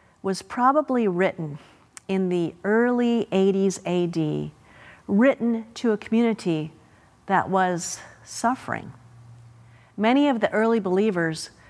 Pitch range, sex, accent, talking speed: 170-230 Hz, female, American, 105 wpm